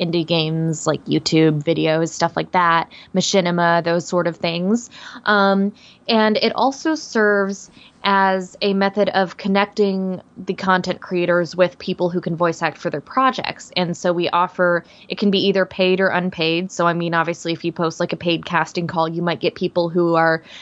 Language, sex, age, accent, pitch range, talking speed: English, female, 20-39, American, 170-190 Hz, 185 wpm